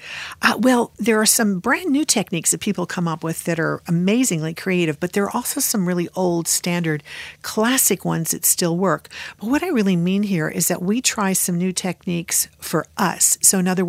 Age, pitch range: 50-69, 165-210 Hz